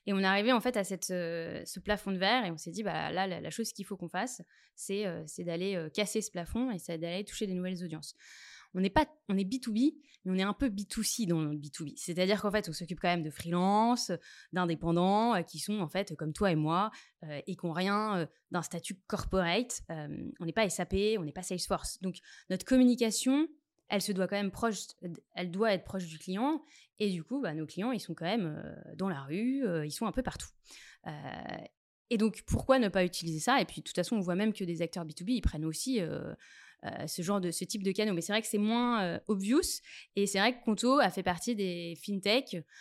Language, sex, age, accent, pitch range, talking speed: French, female, 20-39, French, 175-220 Hz, 245 wpm